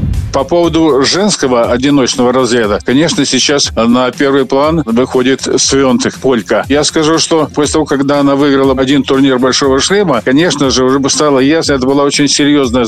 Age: 50-69